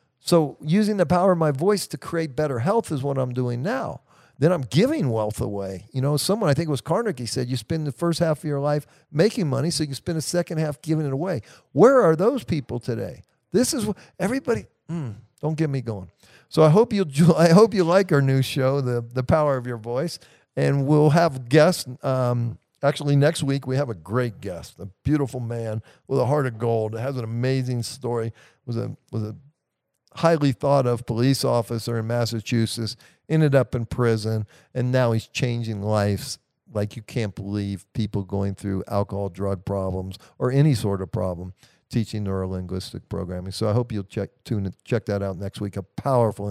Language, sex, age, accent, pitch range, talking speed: English, male, 50-69, American, 110-150 Hz, 200 wpm